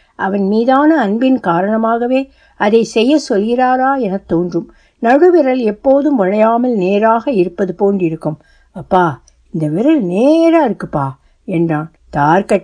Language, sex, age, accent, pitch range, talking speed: Tamil, female, 60-79, native, 190-275 Hz, 90 wpm